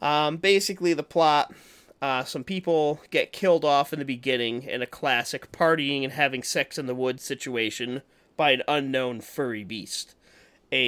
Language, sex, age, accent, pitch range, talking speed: English, male, 30-49, American, 120-145 Hz, 165 wpm